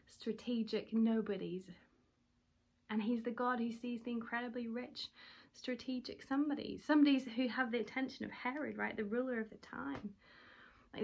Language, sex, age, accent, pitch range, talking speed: English, female, 30-49, British, 210-250 Hz, 145 wpm